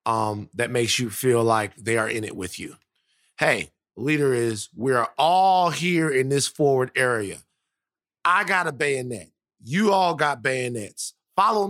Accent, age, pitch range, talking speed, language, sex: American, 30-49, 125-185 Hz, 160 wpm, English, male